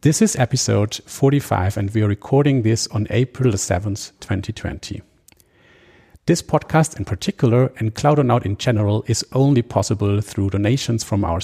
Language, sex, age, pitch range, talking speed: English, male, 50-69, 100-125 Hz, 150 wpm